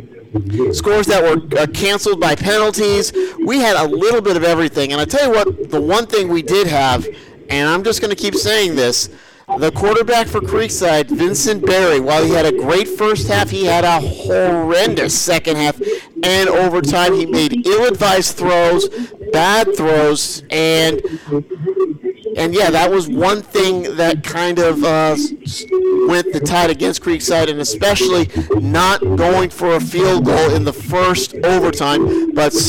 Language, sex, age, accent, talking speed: English, male, 50-69, American, 165 wpm